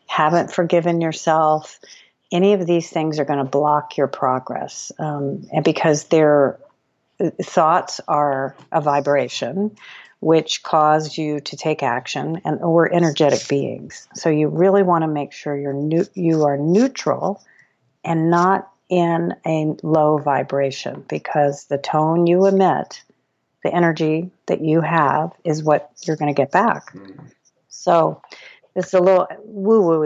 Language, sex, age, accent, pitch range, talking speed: English, female, 50-69, American, 150-180 Hz, 140 wpm